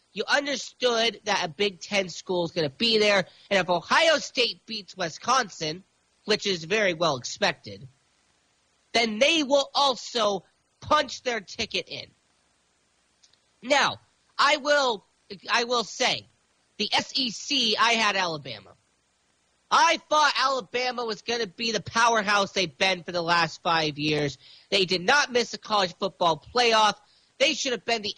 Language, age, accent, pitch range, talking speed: English, 40-59, American, 165-245 Hz, 150 wpm